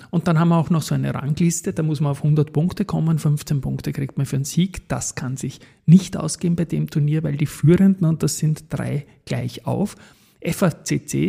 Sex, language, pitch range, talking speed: male, German, 140-175 Hz, 220 wpm